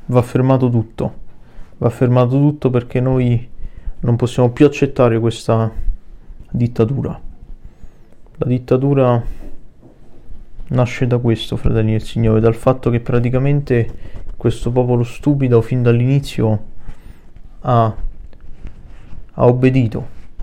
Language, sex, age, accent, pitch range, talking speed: Italian, male, 20-39, native, 110-130 Hz, 100 wpm